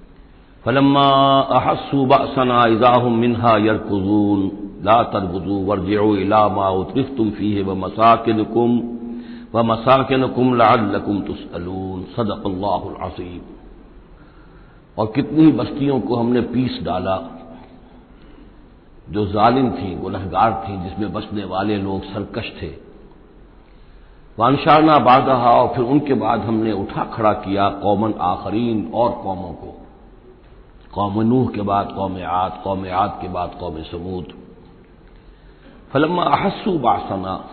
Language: Hindi